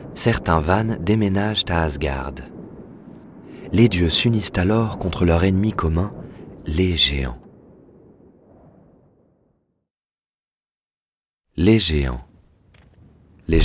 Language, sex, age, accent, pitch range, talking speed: French, male, 40-59, French, 80-100 Hz, 80 wpm